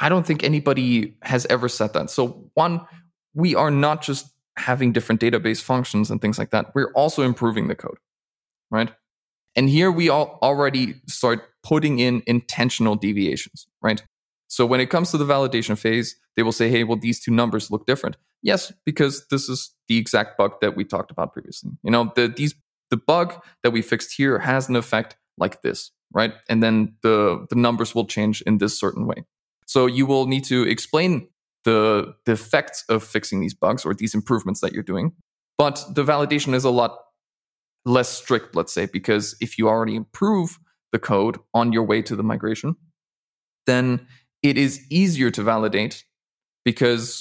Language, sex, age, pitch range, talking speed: English, male, 20-39, 115-140 Hz, 185 wpm